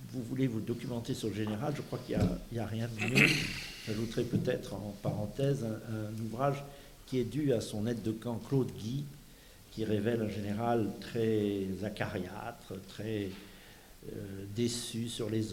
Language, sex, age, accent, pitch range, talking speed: French, male, 60-79, French, 105-130 Hz, 170 wpm